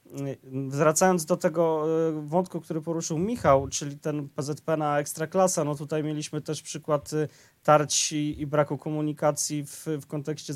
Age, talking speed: 20-39, 135 wpm